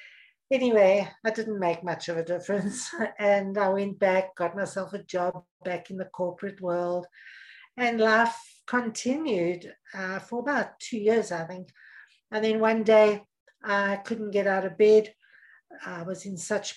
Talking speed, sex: 160 wpm, female